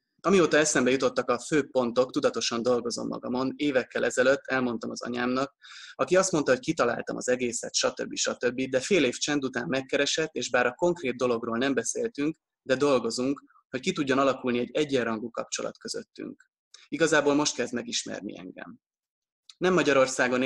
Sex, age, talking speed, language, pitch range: male, 20-39, 155 wpm, Hungarian, 120-140 Hz